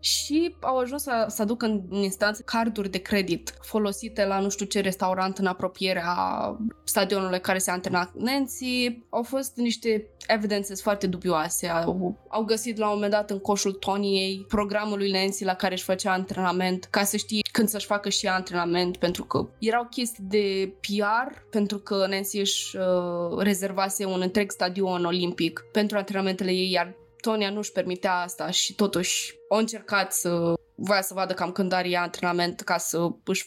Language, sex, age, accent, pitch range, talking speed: Romanian, female, 20-39, native, 185-215 Hz, 170 wpm